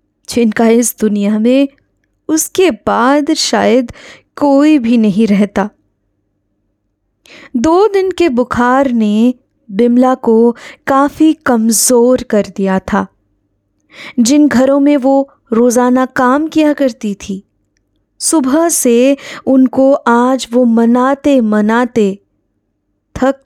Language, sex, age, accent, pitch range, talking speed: Hindi, female, 20-39, native, 200-280 Hz, 100 wpm